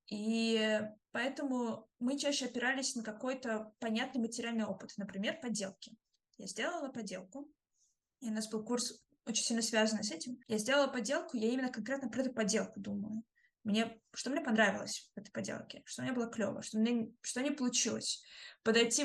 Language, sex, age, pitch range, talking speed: Russian, female, 20-39, 215-245 Hz, 165 wpm